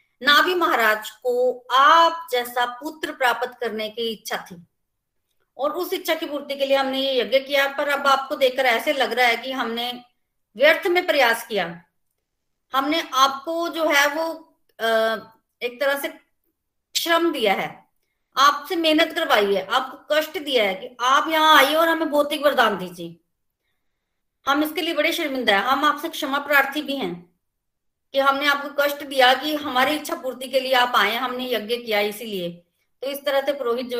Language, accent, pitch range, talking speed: Hindi, native, 235-300 Hz, 175 wpm